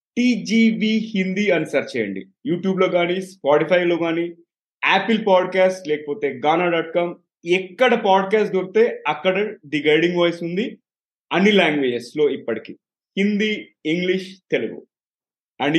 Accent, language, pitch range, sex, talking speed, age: native, Telugu, 165-215 Hz, male, 125 wpm, 30-49